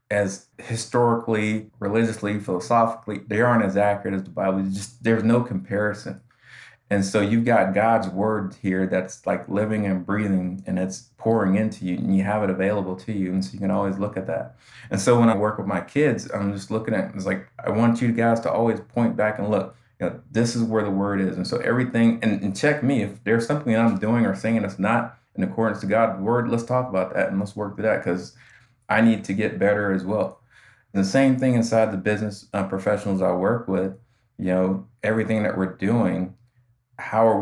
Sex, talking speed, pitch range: male, 220 wpm, 95-115 Hz